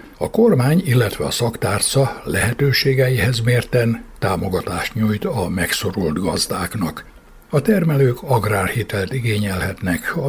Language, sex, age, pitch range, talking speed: Hungarian, male, 60-79, 100-135 Hz, 100 wpm